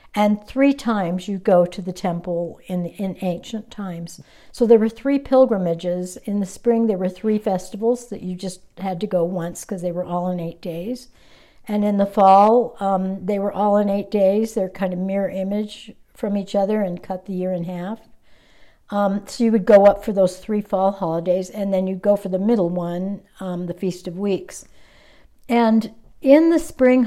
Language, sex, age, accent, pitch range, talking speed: English, female, 60-79, American, 185-225 Hz, 200 wpm